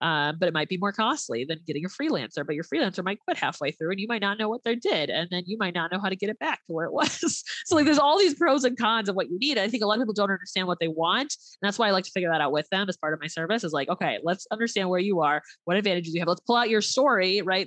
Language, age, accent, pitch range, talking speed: English, 20-39, American, 180-240 Hz, 335 wpm